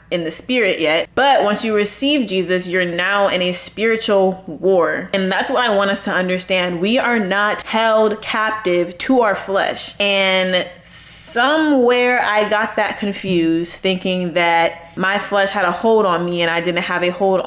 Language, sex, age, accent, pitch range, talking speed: English, female, 20-39, American, 185-225 Hz, 180 wpm